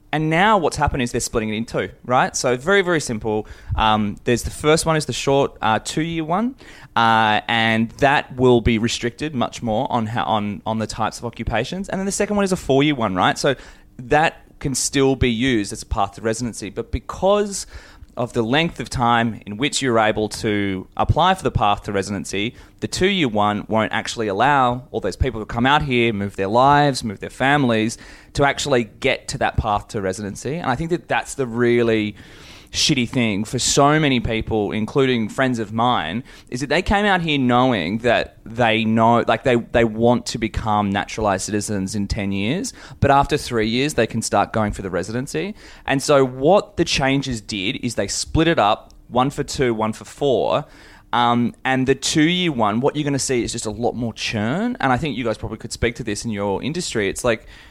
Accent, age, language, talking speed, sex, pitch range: Australian, 20-39, English, 210 wpm, male, 110-140 Hz